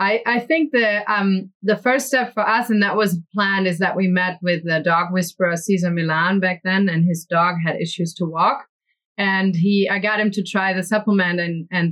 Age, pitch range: 30-49, 180-210 Hz